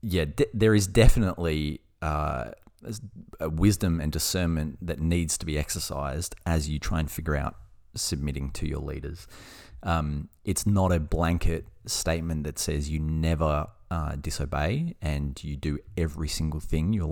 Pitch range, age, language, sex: 75-95 Hz, 30-49, English, male